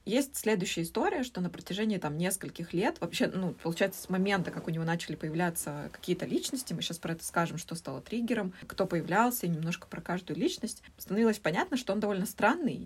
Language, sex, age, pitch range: Russian, female, 20-39, 170-215 Hz